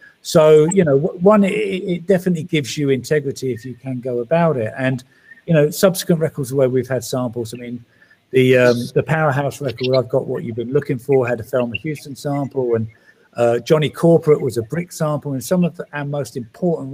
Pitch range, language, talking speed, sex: 125-165 Hz, English, 200 wpm, male